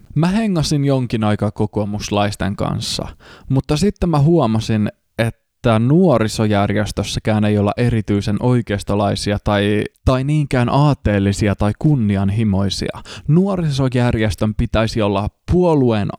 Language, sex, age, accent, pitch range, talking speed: Finnish, male, 20-39, native, 105-135 Hz, 95 wpm